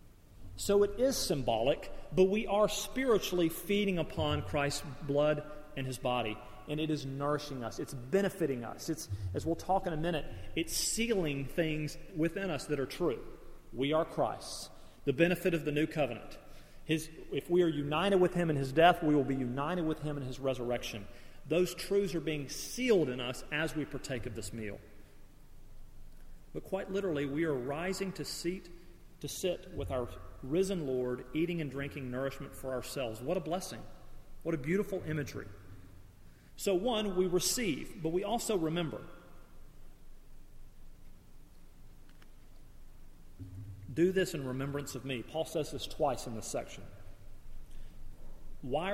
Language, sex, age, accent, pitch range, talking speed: English, male, 40-59, American, 120-170 Hz, 155 wpm